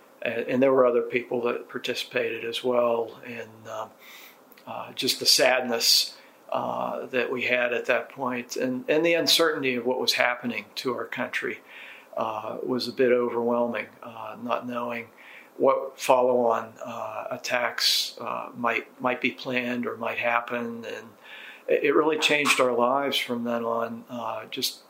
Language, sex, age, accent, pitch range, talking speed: English, male, 50-69, American, 115-130 Hz, 155 wpm